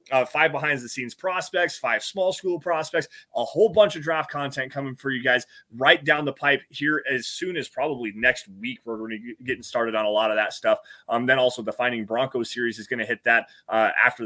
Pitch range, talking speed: 125-160 Hz, 225 wpm